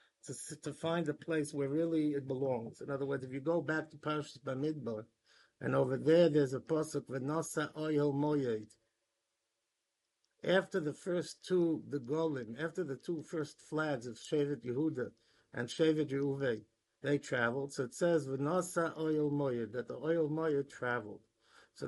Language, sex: English, male